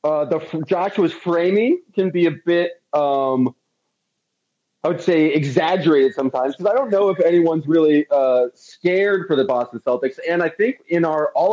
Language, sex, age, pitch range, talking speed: English, male, 30-49, 125-165 Hz, 170 wpm